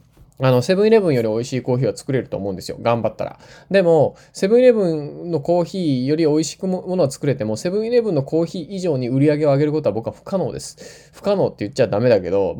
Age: 20-39